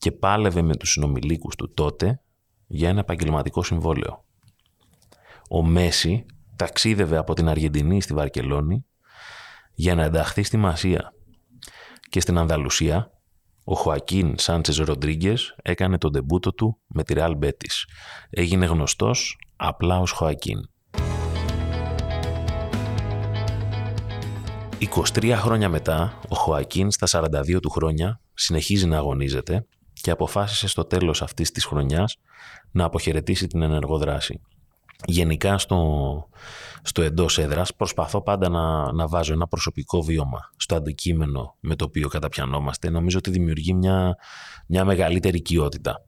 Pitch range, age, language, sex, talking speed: 80-95 Hz, 30-49, Greek, male, 120 wpm